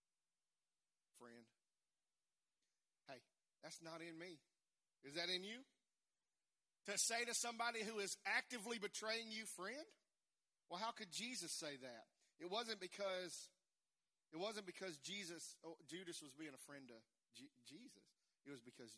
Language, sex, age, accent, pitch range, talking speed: English, male, 40-59, American, 130-200 Hz, 140 wpm